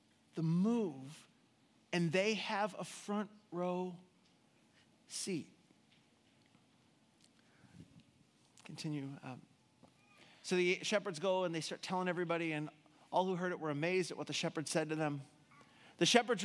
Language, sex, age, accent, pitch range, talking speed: English, male, 40-59, American, 170-210 Hz, 130 wpm